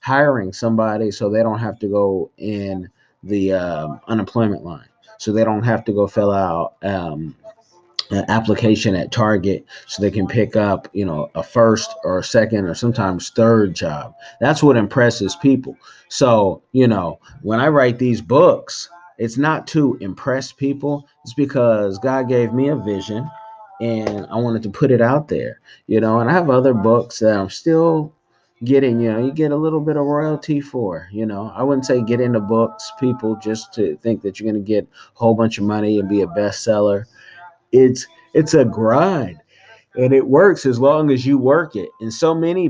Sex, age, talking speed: male, 30-49, 190 wpm